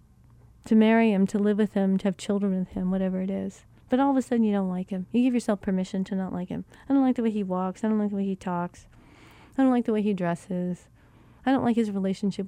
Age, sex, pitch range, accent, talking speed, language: 30-49, female, 180-225 Hz, American, 280 wpm, English